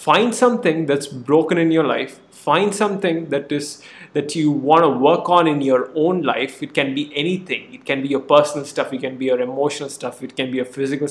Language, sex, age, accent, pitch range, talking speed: English, male, 20-39, Indian, 140-175 Hz, 225 wpm